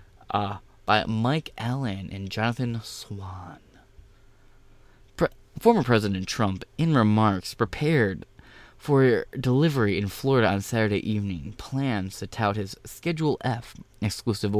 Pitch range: 100-125 Hz